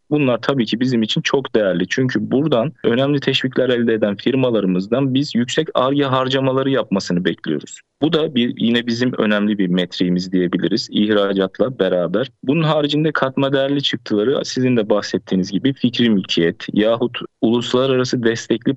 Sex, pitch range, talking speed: male, 100-130 Hz, 145 wpm